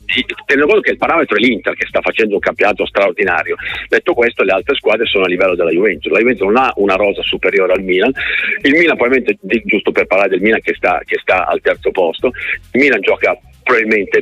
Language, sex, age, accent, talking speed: Italian, male, 50-69, native, 210 wpm